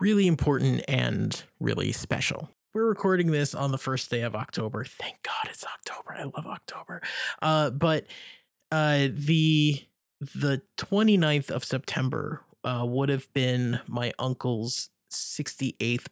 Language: English